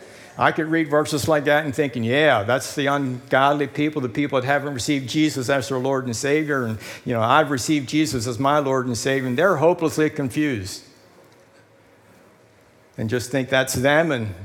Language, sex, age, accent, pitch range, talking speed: English, male, 60-79, American, 125-145 Hz, 185 wpm